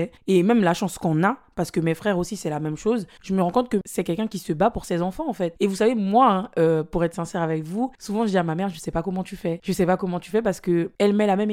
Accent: French